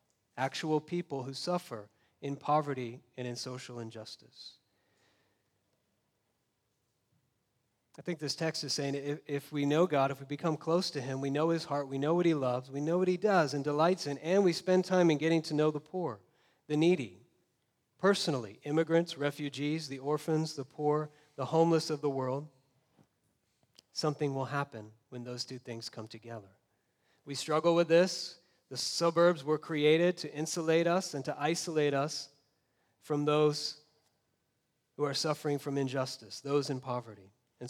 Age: 40-59